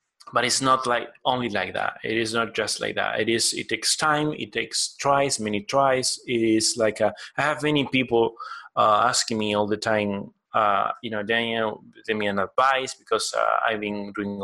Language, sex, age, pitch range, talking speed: English, male, 20-39, 105-135 Hz, 210 wpm